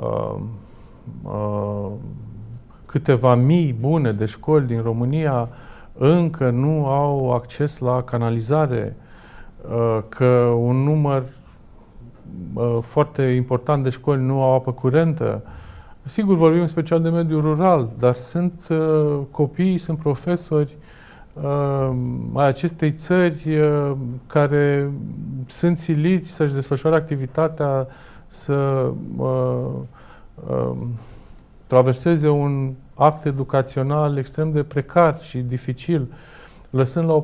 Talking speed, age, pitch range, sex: 95 wpm, 40-59, 125-155 Hz, male